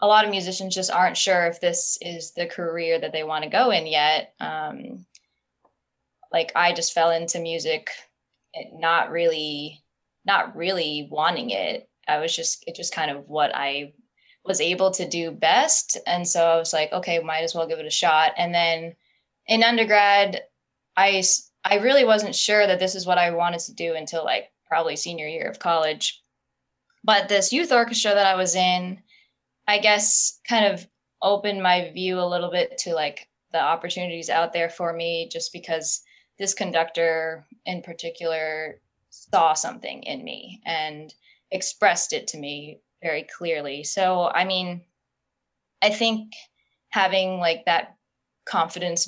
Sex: female